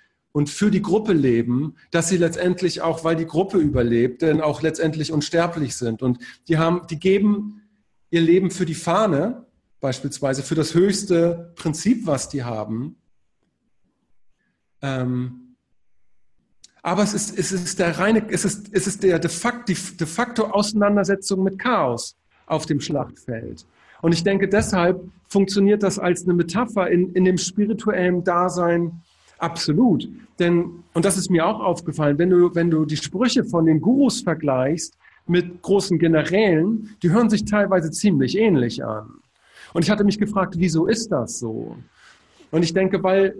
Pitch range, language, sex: 155-195 Hz, English, male